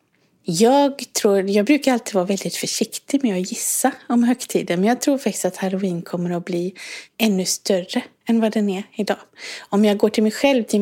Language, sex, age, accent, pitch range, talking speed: English, female, 30-49, Swedish, 190-235 Hz, 200 wpm